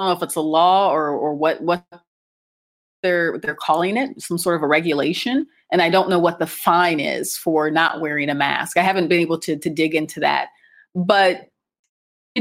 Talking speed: 215 wpm